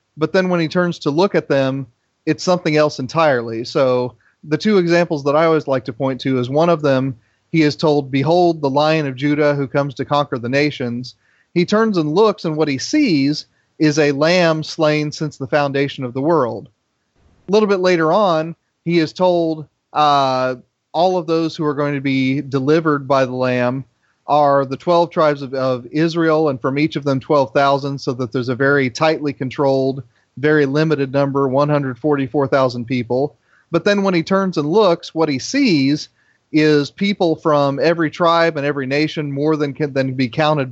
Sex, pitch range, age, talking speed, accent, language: male, 135-165 Hz, 30-49, 190 wpm, American, English